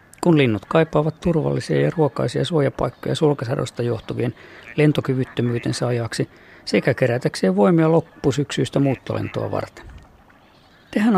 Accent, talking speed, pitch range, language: native, 95 wpm, 125-160 Hz, Finnish